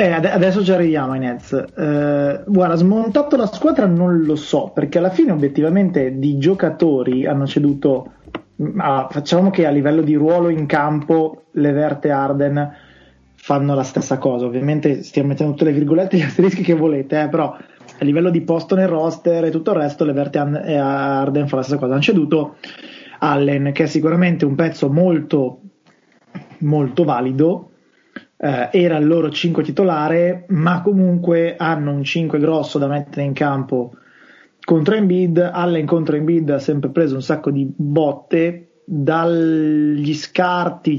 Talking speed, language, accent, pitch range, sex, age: 155 wpm, Italian, native, 140-170 Hz, male, 20-39